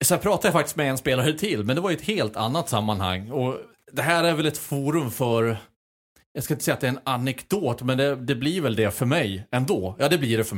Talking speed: 270 wpm